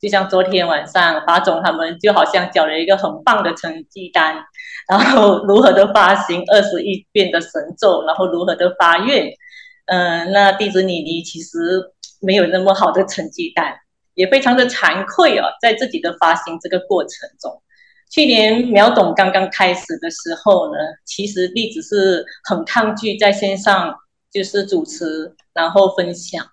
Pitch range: 180-235 Hz